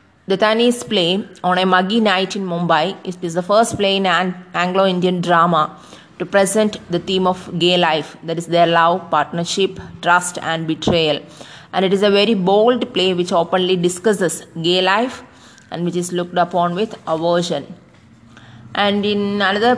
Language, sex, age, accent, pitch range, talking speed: English, female, 20-39, Indian, 170-195 Hz, 170 wpm